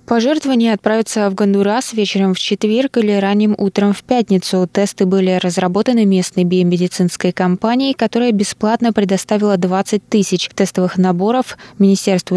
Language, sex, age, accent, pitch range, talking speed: Russian, female, 20-39, native, 180-205 Hz, 125 wpm